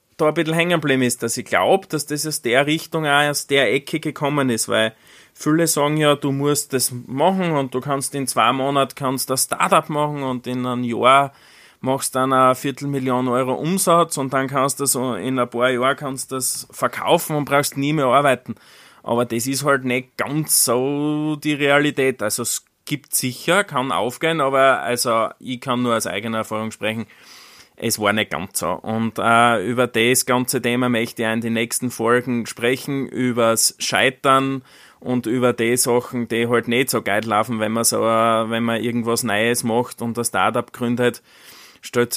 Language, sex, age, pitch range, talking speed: German, male, 20-39, 115-135 Hz, 190 wpm